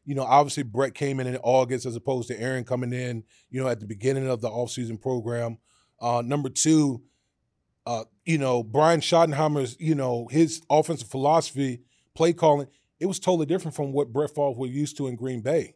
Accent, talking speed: American, 200 wpm